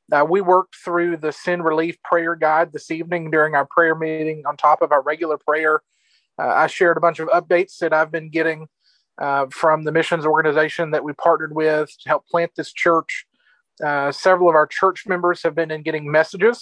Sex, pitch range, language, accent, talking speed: male, 150-170 Hz, English, American, 205 wpm